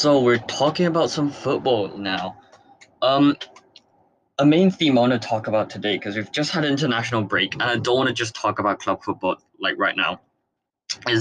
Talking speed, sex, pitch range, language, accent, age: 205 wpm, male, 115-145 Hz, English, British, 20-39